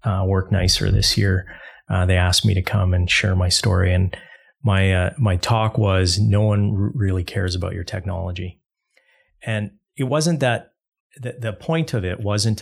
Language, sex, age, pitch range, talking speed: English, male, 30-49, 95-110 Hz, 180 wpm